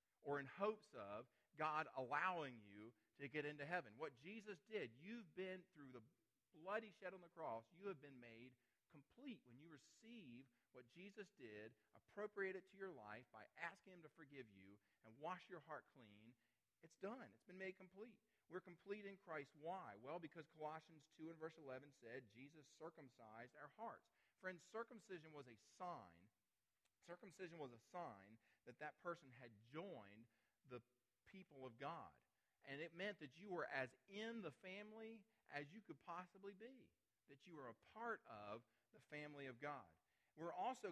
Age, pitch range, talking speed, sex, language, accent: 40-59, 125-185 Hz, 175 wpm, male, English, American